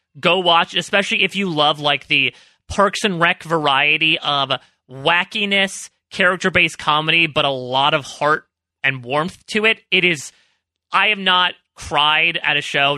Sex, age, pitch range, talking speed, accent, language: male, 30-49, 135-195 Hz, 155 wpm, American, English